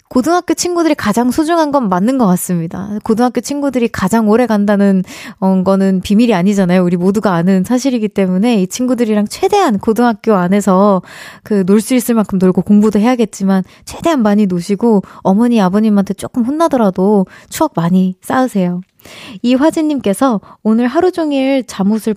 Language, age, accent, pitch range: Korean, 20-39, native, 195-275 Hz